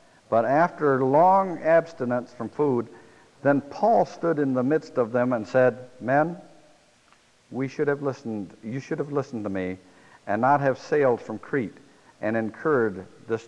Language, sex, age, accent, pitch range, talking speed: English, male, 60-79, American, 110-145 Hz, 160 wpm